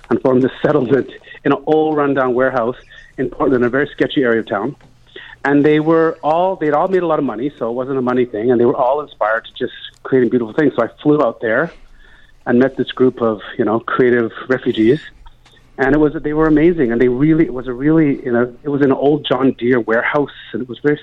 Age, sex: 40-59, male